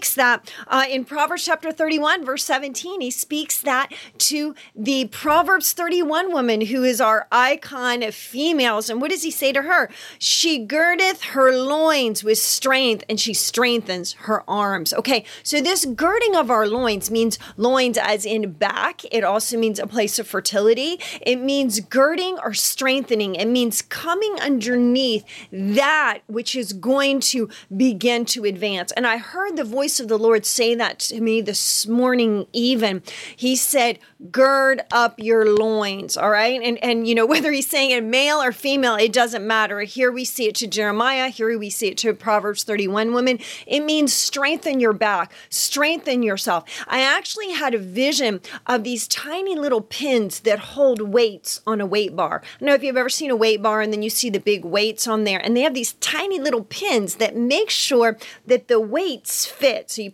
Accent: American